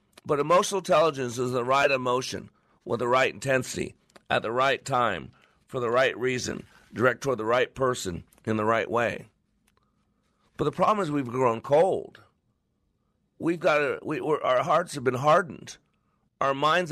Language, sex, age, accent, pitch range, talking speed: English, male, 50-69, American, 125-155 Hz, 165 wpm